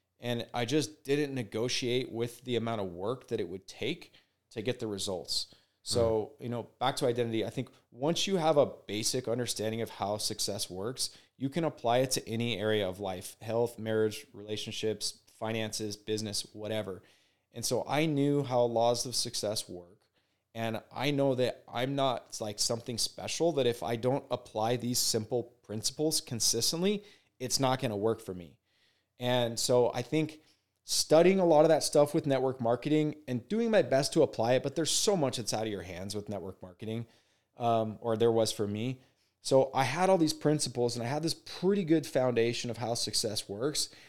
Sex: male